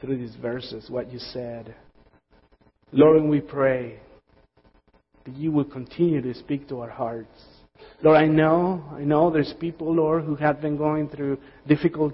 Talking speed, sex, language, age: 160 wpm, male, English, 40-59